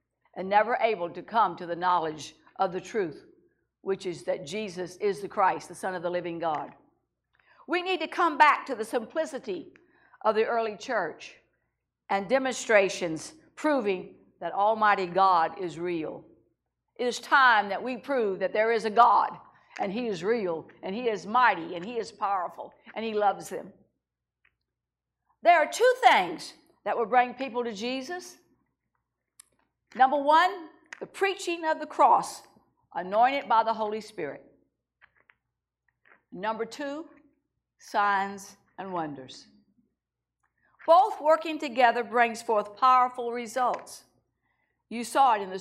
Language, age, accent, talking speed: English, 60-79, American, 145 wpm